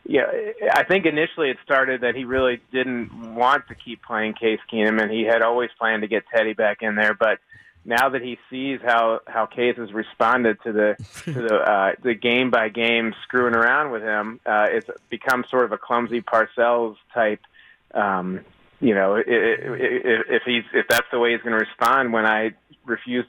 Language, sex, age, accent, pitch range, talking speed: English, male, 30-49, American, 110-130 Hz, 200 wpm